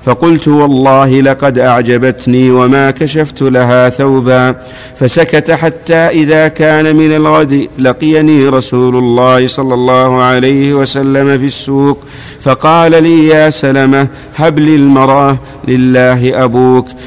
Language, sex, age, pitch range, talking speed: Arabic, male, 50-69, 125-140 Hz, 110 wpm